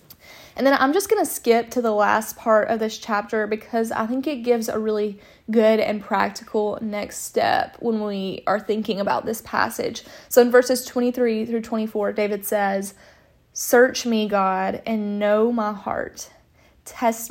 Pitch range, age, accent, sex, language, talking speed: 210-235 Hz, 20-39, American, female, English, 170 wpm